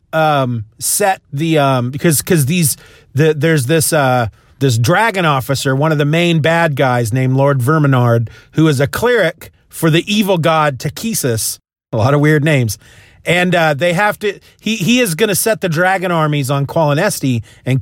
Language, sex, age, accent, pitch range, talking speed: English, male, 40-59, American, 135-185 Hz, 180 wpm